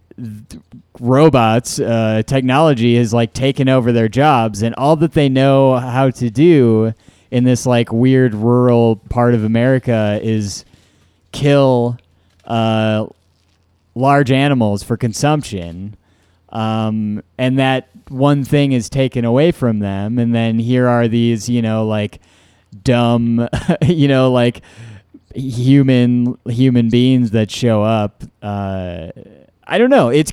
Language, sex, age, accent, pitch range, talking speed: English, male, 30-49, American, 110-135 Hz, 130 wpm